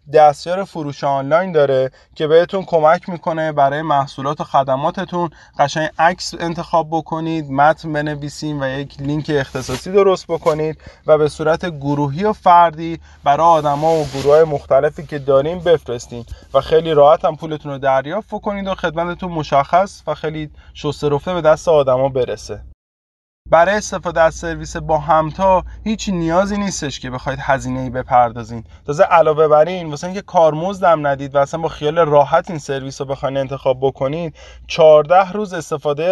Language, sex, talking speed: Persian, male, 155 wpm